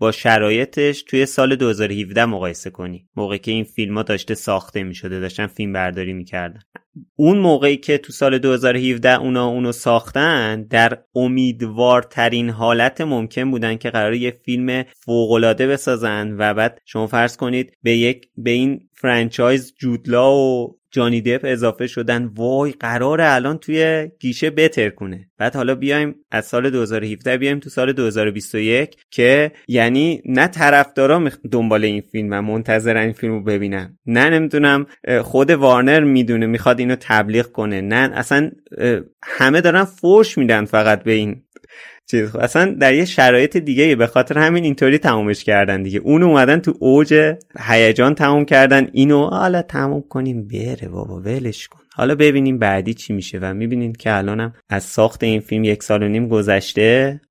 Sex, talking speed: male, 155 wpm